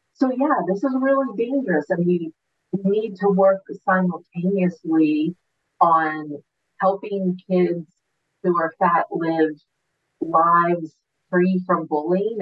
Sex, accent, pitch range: female, American, 160-190 Hz